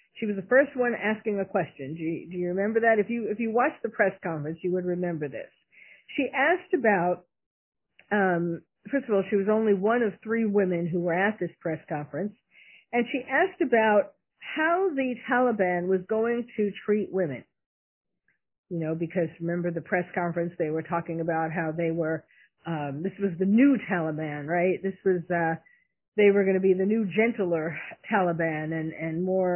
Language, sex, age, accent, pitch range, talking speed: English, female, 50-69, American, 170-240 Hz, 190 wpm